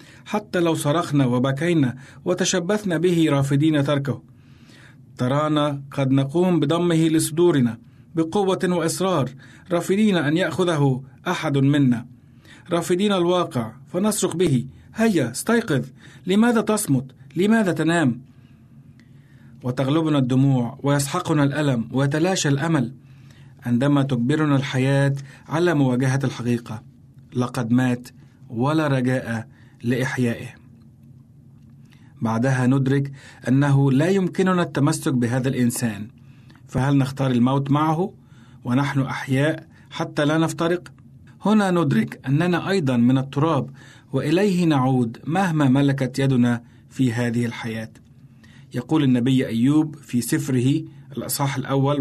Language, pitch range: Arabic, 125-155 Hz